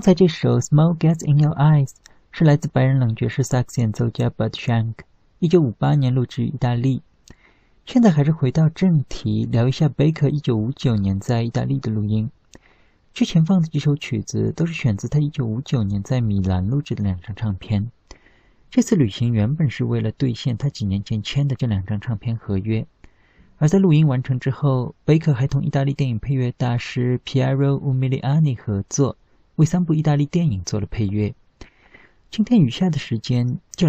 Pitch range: 115-150 Hz